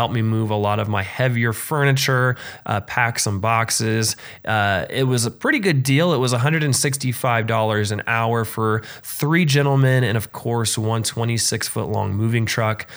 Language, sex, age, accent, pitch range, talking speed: English, male, 20-39, American, 110-130 Hz, 165 wpm